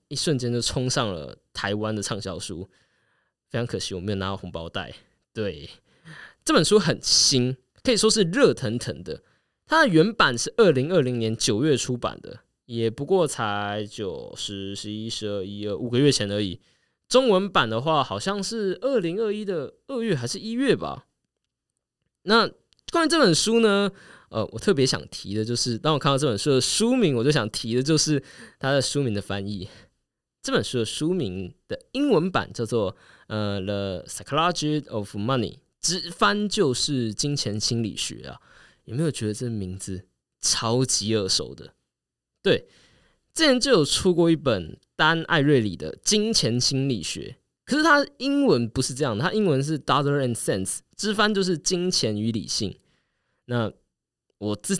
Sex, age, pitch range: male, 20-39, 105-165 Hz